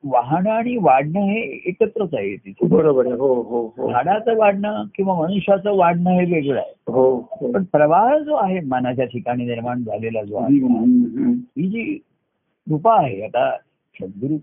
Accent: native